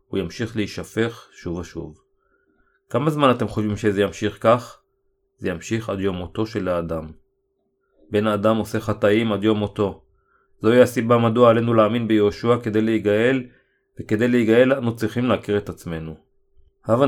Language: Hebrew